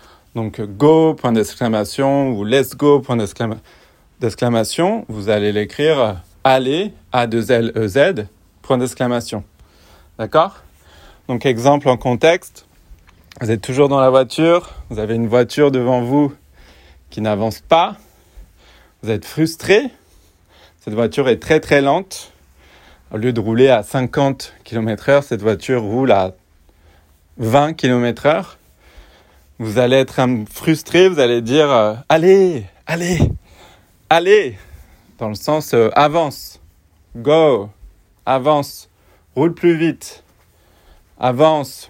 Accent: French